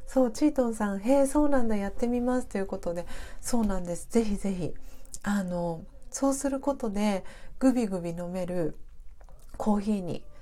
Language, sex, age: Japanese, female, 40-59